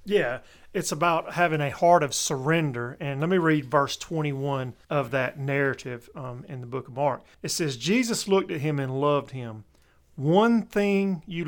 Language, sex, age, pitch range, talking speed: English, male, 40-59, 140-175 Hz, 185 wpm